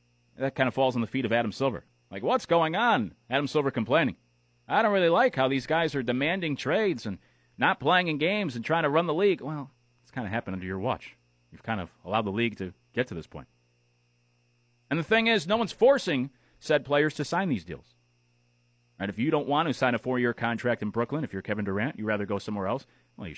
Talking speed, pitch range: 240 wpm, 90-140 Hz